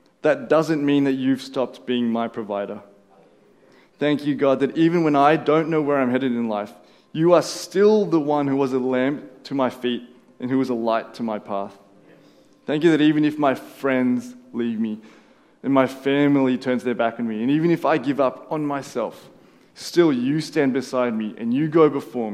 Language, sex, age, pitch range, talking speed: English, male, 20-39, 120-150 Hz, 205 wpm